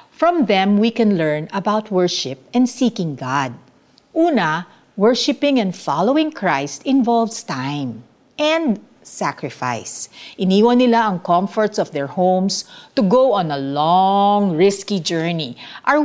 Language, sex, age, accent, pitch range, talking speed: Filipino, female, 50-69, native, 160-245 Hz, 125 wpm